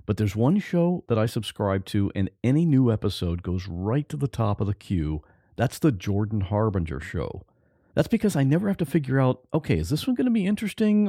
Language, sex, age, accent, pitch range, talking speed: English, male, 50-69, American, 95-135 Hz, 220 wpm